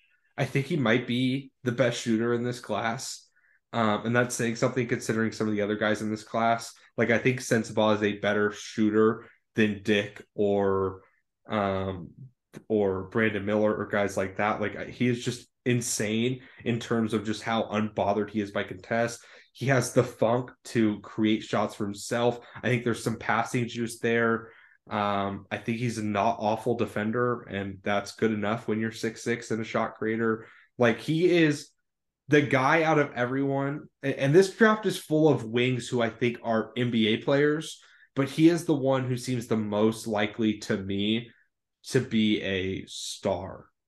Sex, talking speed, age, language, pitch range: male, 180 wpm, 20-39, English, 105-125 Hz